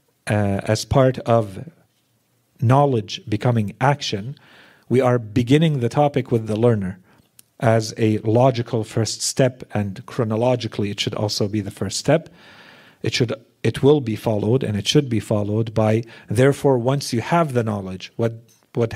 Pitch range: 110-135 Hz